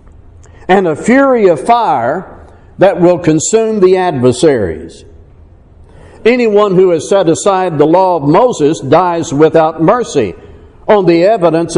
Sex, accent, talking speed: male, American, 125 wpm